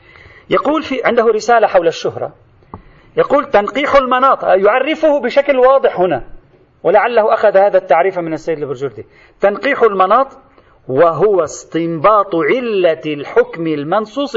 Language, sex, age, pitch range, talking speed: Arabic, male, 40-59, 185-290 Hz, 115 wpm